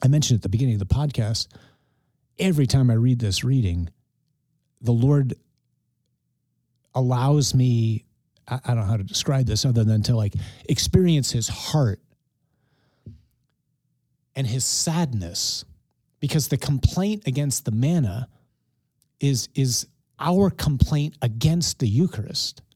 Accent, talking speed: American, 125 wpm